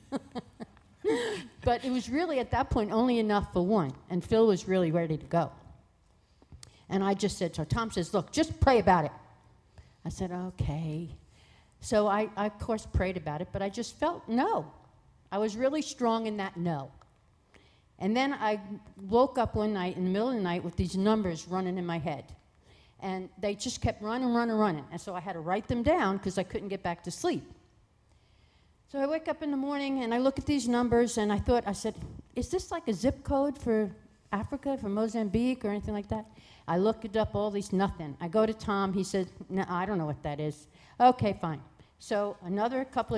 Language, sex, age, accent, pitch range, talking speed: English, female, 50-69, American, 175-235 Hz, 210 wpm